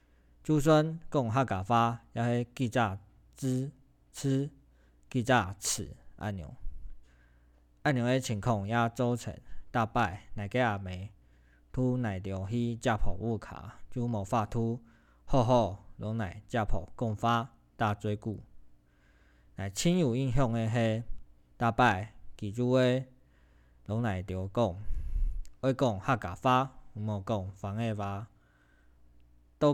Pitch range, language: 95-125 Hz, Chinese